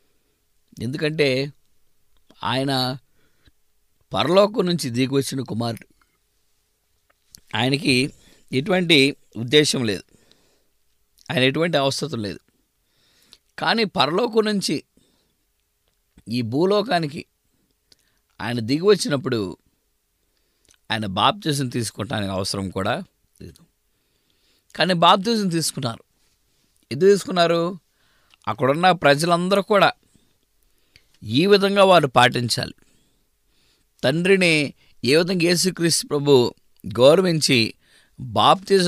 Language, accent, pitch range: English, Indian, 115-170 Hz